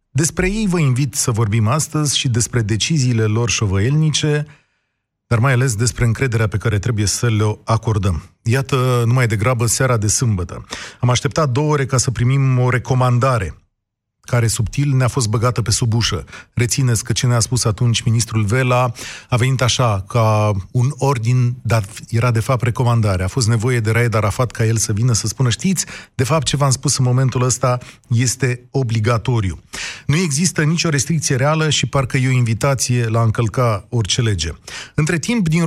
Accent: native